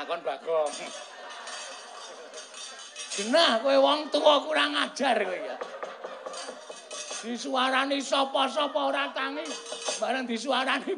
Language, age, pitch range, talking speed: Indonesian, 50-69, 220-290 Hz, 75 wpm